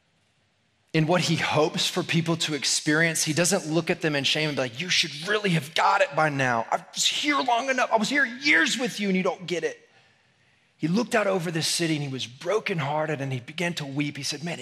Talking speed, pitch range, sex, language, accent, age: 245 wpm, 135-190 Hz, male, English, American, 30-49